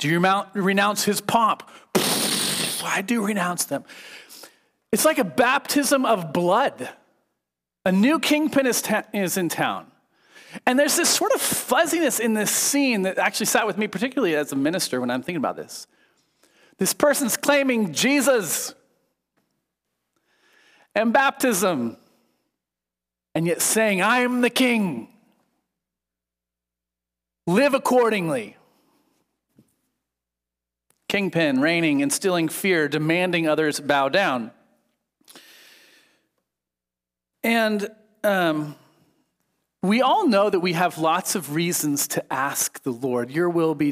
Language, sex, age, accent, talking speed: English, male, 40-59, American, 120 wpm